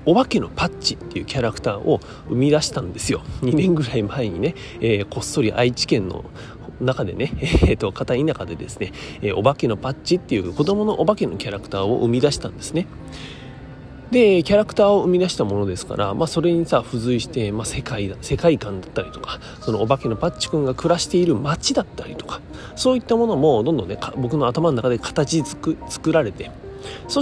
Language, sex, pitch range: Japanese, male, 115-180 Hz